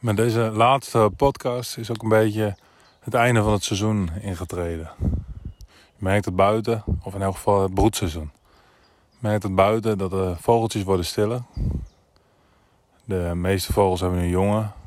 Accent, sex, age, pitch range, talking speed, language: Dutch, male, 20-39, 90-105 Hz, 155 wpm, Dutch